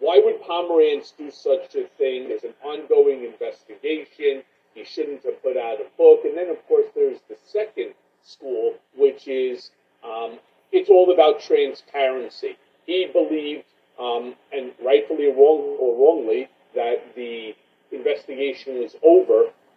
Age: 40-59